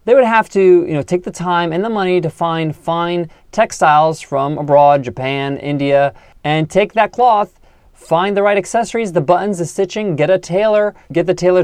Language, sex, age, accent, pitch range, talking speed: English, male, 30-49, American, 140-195 Hz, 195 wpm